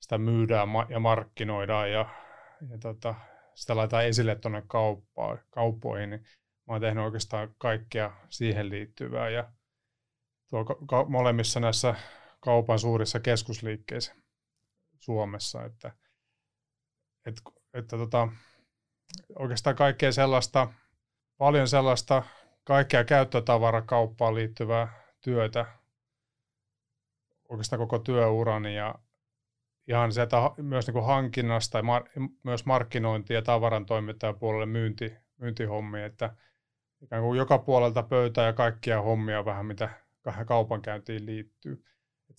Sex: male